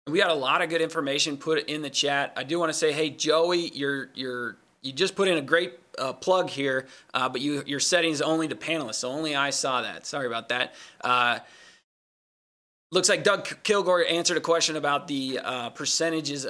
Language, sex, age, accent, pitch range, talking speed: English, male, 20-39, American, 135-160 Hz, 205 wpm